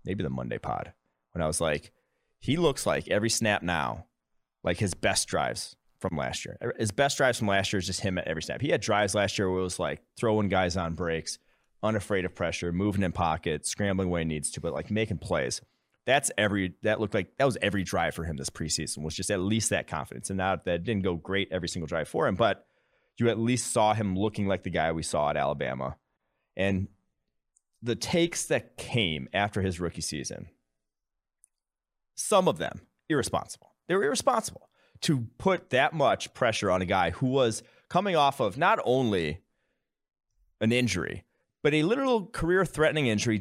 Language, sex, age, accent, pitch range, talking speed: English, male, 30-49, American, 85-120 Hz, 200 wpm